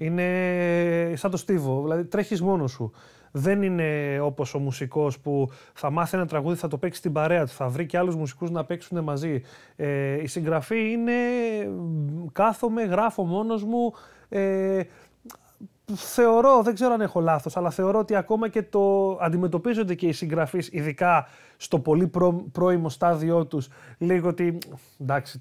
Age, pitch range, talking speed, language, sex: 30-49, 145-190 Hz, 160 wpm, Greek, male